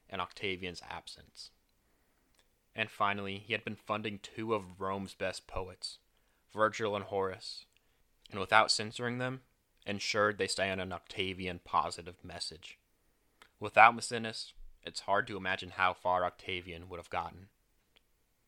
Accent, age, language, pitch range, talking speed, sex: American, 20-39, English, 90-105 Hz, 125 wpm, male